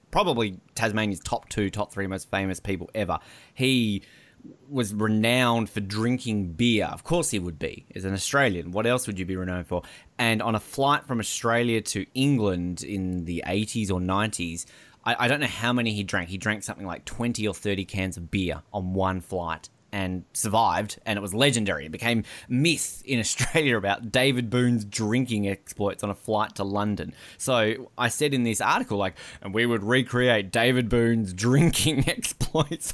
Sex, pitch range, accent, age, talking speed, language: male, 95-120 Hz, Australian, 20-39, 185 wpm, English